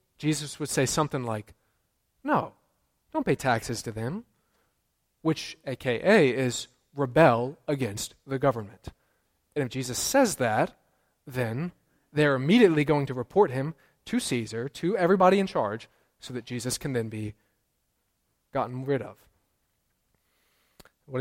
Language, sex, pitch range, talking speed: English, male, 125-160 Hz, 130 wpm